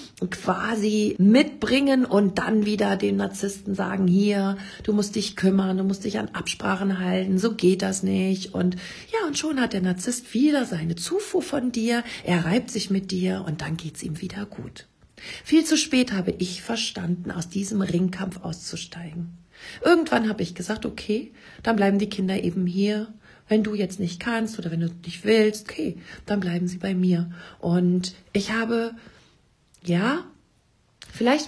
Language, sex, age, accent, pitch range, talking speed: German, female, 40-59, German, 180-215 Hz, 170 wpm